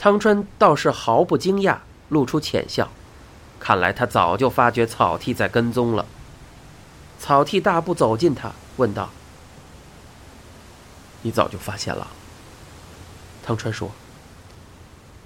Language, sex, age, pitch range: Chinese, male, 30-49, 100-130 Hz